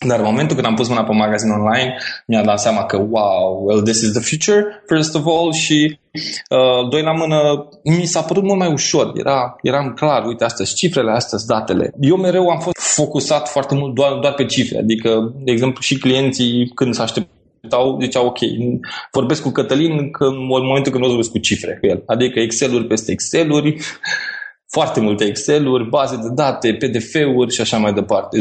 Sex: male